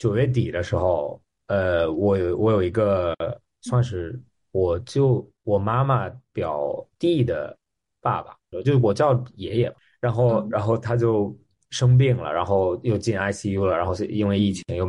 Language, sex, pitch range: Chinese, male, 95-120 Hz